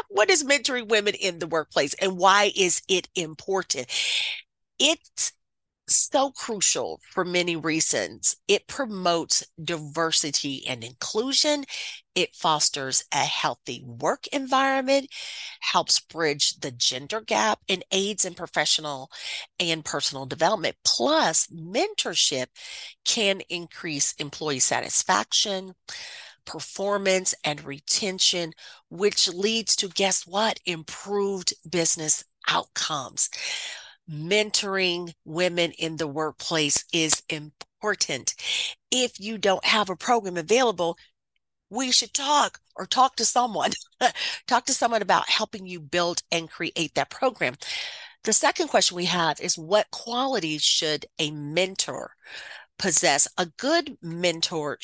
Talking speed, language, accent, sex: 115 wpm, English, American, female